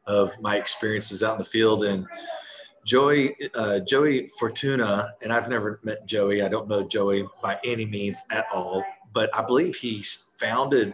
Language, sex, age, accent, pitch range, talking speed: English, male, 40-59, American, 100-125 Hz, 170 wpm